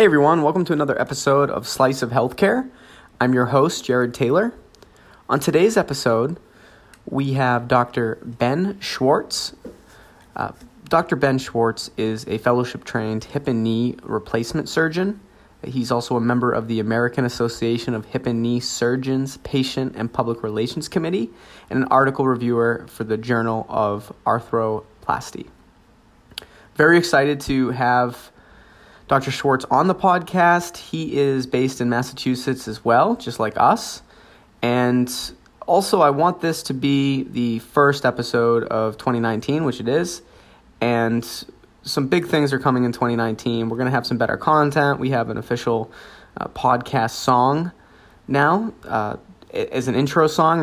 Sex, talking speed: male, 145 wpm